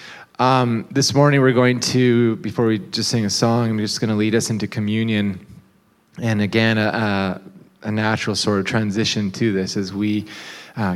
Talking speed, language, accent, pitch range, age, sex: 180 wpm, English, American, 95-115 Hz, 20-39, male